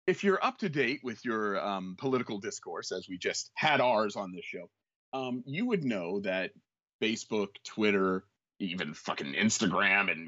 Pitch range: 105-145 Hz